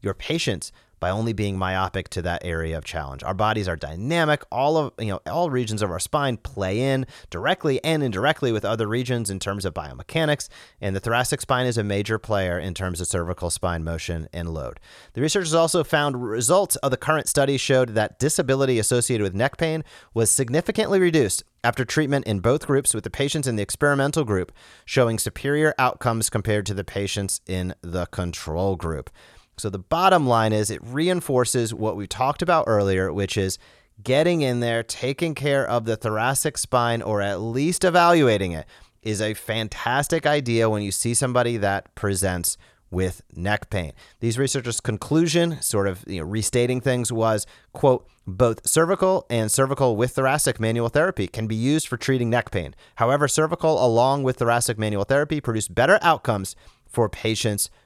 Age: 30-49